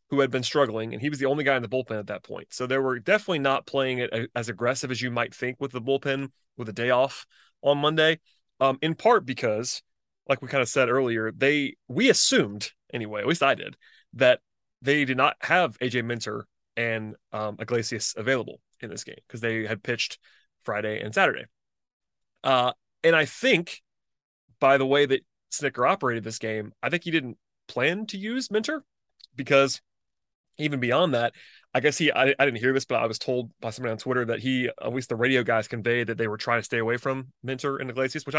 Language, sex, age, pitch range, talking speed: English, male, 30-49, 120-145 Hz, 215 wpm